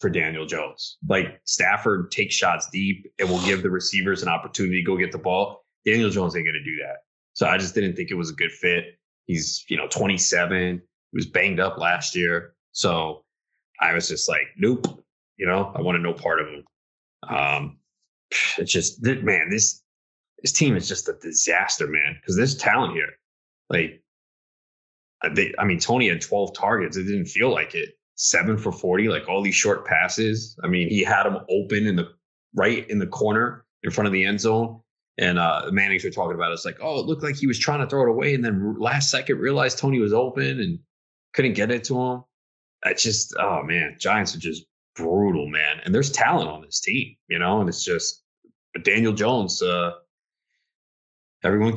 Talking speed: 205 wpm